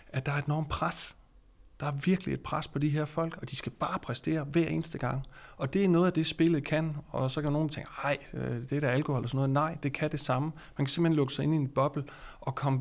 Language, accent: Danish, native